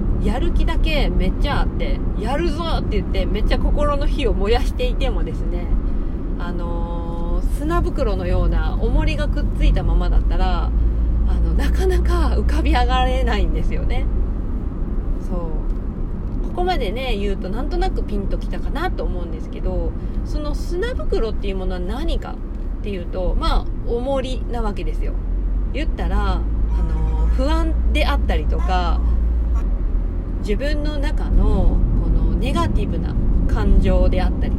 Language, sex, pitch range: Japanese, female, 70-85 Hz